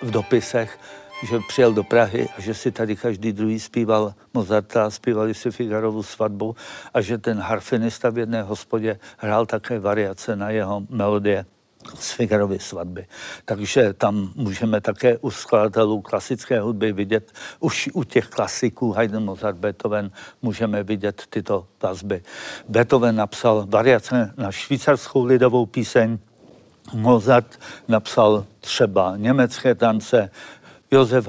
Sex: male